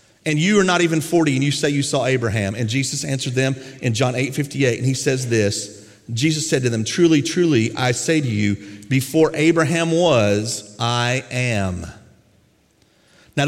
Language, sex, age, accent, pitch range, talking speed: English, male, 40-59, American, 115-160 Hz, 175 wpm